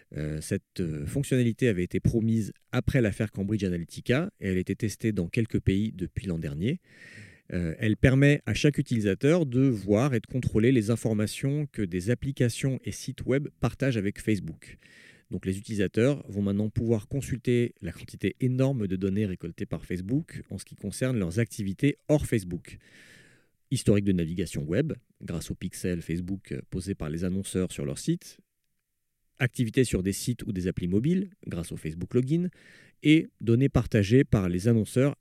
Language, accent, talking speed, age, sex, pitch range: French, French, 165 wpm, 40-59, male, 95-130 Hz